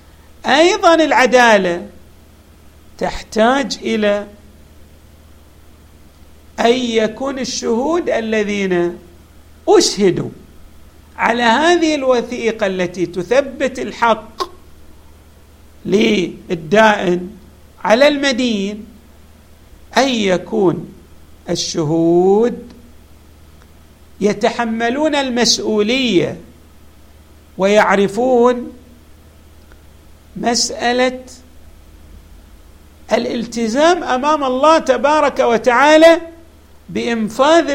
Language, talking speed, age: Arabic, 50 wpm, 50-69